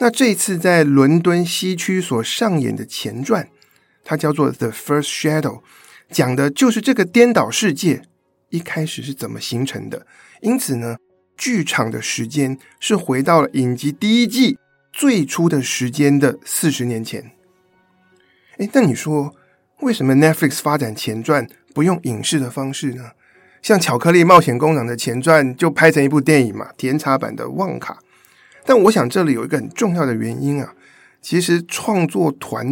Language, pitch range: Chinese, 130-180 Hz